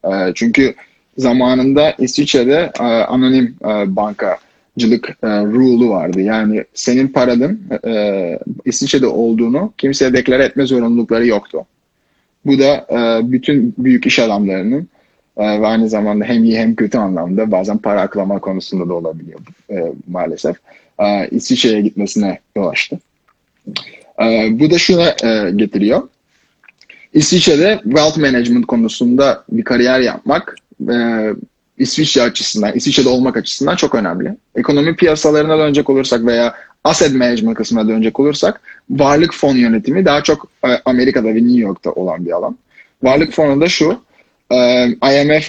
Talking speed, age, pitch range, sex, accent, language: 110 wpm, 30-49, 110-150 Hz, male, native, Turkish